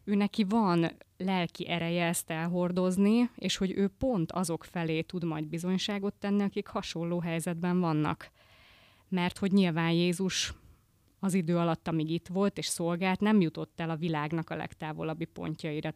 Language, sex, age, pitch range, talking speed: Hungarian, female, 20-39, 160-190 Hz, 155 wpm